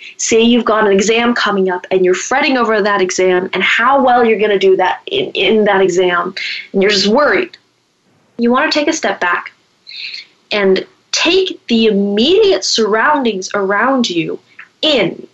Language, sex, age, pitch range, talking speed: English, female, 20-39, 190-255 Hz, 170 wpm